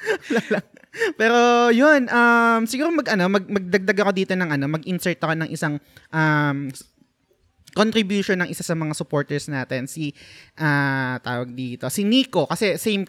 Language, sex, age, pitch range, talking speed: Filipino, male, 20-39, 140-195 Hz, 140 wpm